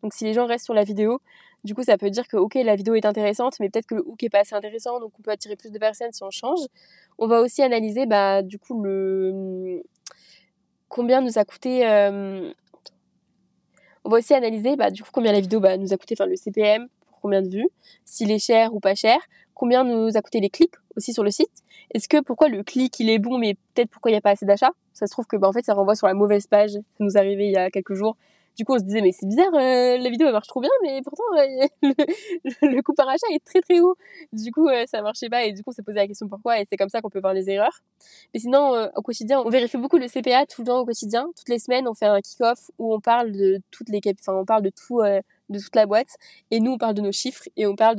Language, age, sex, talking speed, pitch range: French, 20-39, female, 265 wpm, 200-250 Hz